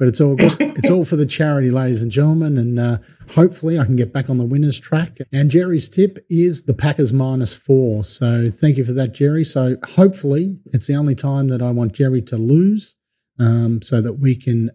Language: English